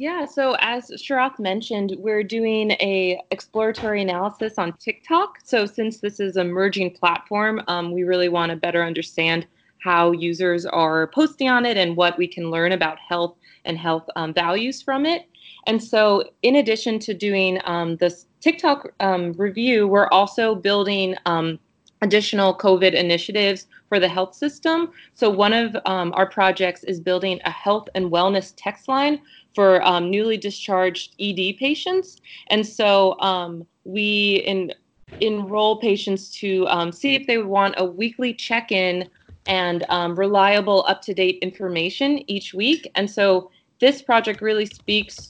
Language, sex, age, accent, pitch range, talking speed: English, female, 20-39, American, 180-220 Hz, 155 wpm